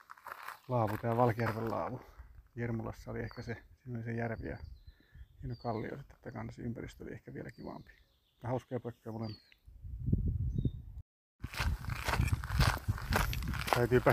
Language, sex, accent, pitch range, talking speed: Finnish, male, native, 110-135 Hz, 85 wpm